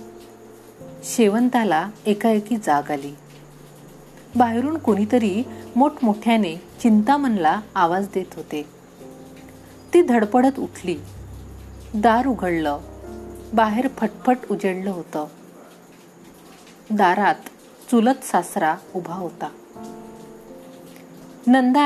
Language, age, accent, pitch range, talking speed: Marathi, 40-59, native, 170-255 Hz, 70 wpm